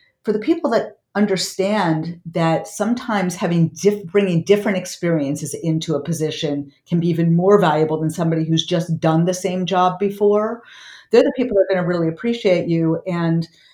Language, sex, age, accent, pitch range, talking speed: English, female, 50-69, American, 155-195 Hz, 175 wpm